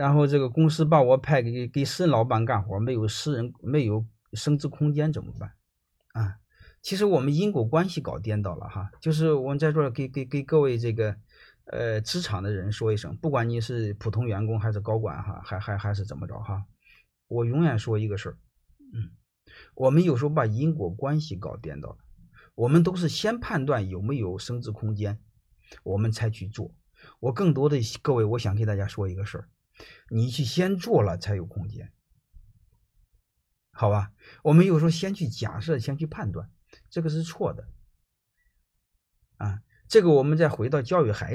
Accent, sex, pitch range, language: native, male, 105-150 Hz, Chinese